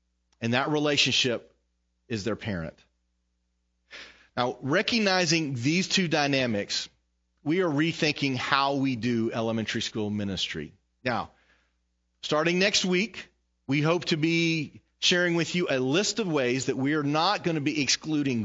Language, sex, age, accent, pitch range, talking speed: English, male, 40-59, American, 115-165 Hz, 140 wpm